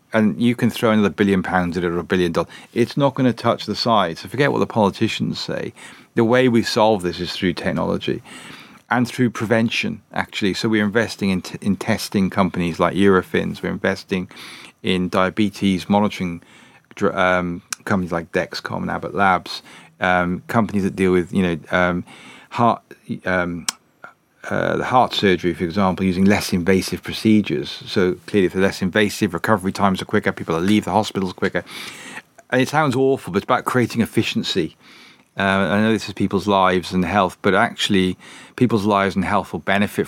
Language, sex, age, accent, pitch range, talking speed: English, male, 40-59, British, 90-105 Hz, 180 wpm